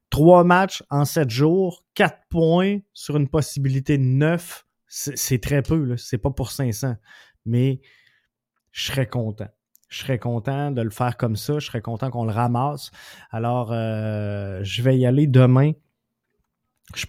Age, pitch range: 20-39, 120-150 Hz